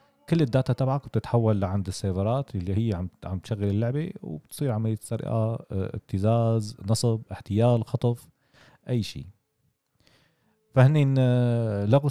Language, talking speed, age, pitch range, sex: Arabic, 110 wpm, 40-59, 105-135 Hz, male